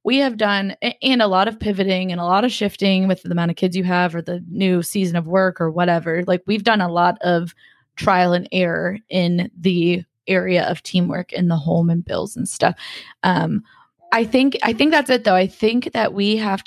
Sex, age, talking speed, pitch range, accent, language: female, 20-39, 225 wpm, 180-215 Hz, American, English